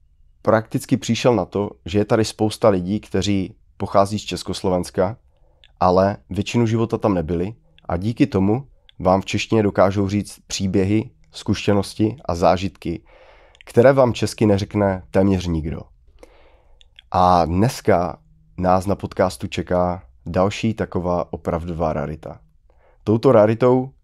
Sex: male